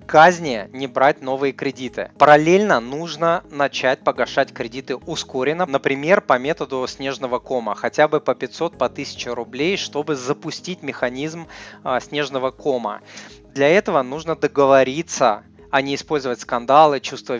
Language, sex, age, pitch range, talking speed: Russian, male, 20-39, 125-150 Hz, 130 wpm